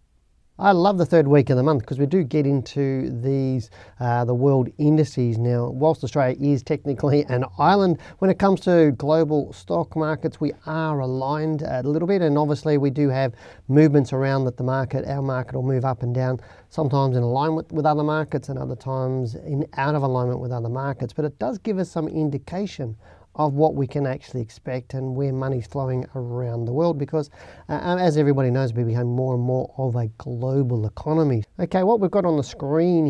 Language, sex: English, male